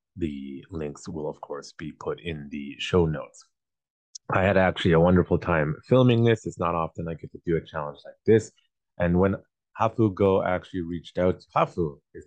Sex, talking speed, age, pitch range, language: male, 195 wpm, 30-49, 80-105 Hz, English